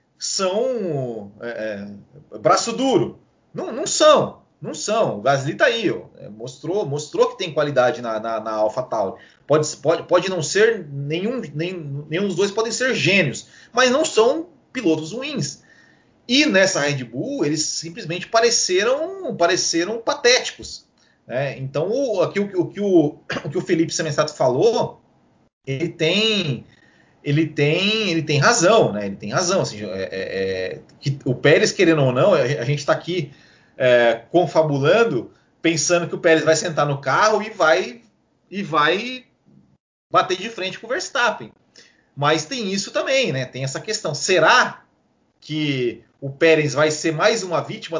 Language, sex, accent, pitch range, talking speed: Portuguese, male, Brazilian, 135-190 Hz, 155 wpm